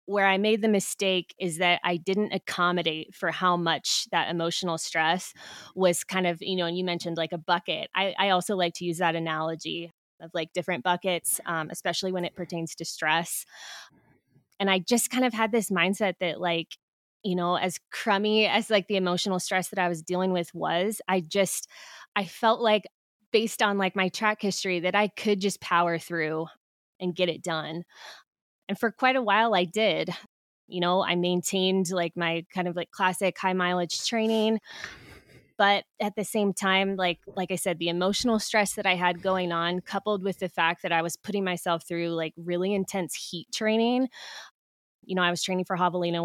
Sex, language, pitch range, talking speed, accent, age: female, English, 170-195 Hz, 195 wpm, American, 20-39